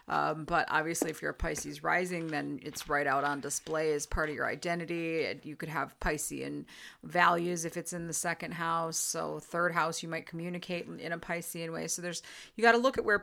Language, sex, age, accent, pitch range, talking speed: English, female, 30-49, American, 155-175 Hz, 220 wpm